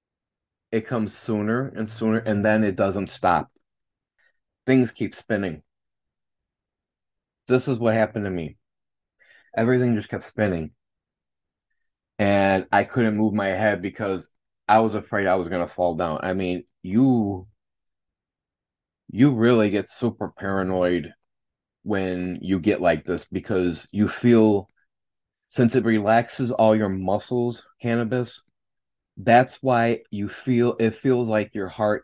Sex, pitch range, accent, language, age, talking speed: male, 95-120 Hz, American, English, 30-49, 135 wpm